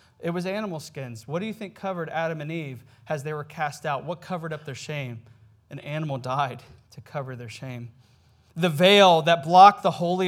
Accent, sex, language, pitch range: American, male, English, 125-170 Hz